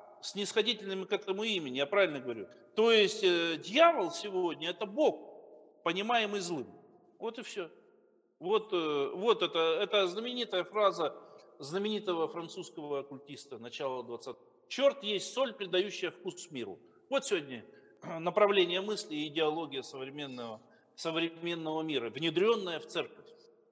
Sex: male